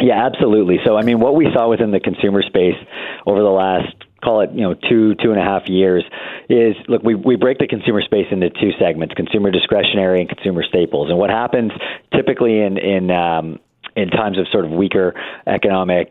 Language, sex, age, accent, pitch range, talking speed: English, male, 40-59, American, 85-95 Hz, 205 wpm